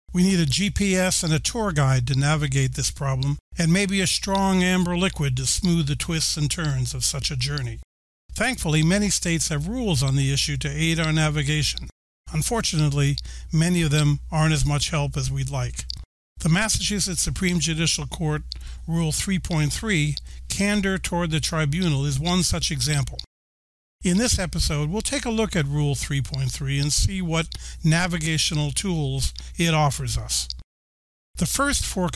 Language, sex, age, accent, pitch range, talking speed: English, male, 50-69, American, 135-175 Hz, 160 wpm